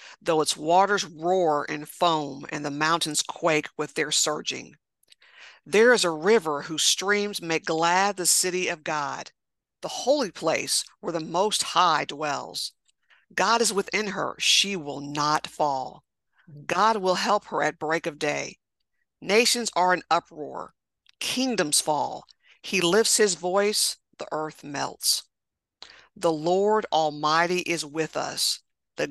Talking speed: 140 wpm